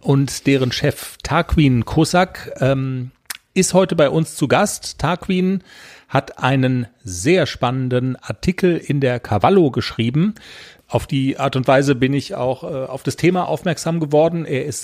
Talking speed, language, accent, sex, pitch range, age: 145 wpm, German, German, male, 125-155 Hz, 40-59